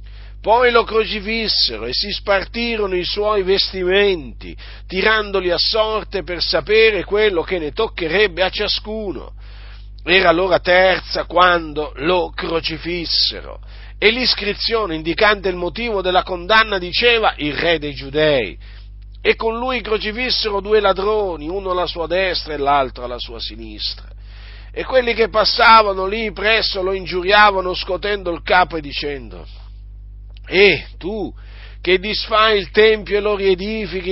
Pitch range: 150-210 Hz